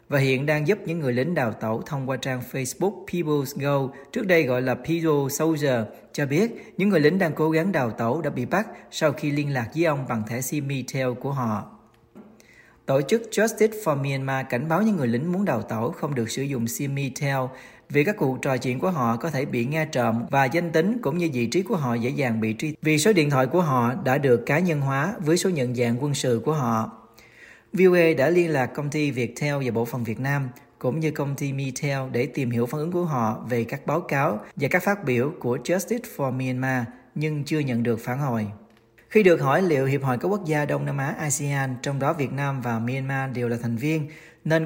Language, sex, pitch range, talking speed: Vietnamese, male, 125-155 Hz, 230 wpm